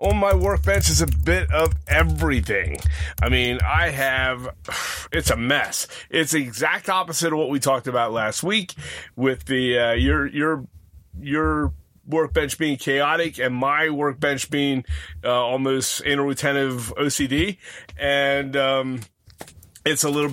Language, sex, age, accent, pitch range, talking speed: English, male, 30-49, American, 120-150 Hz, 140 wpm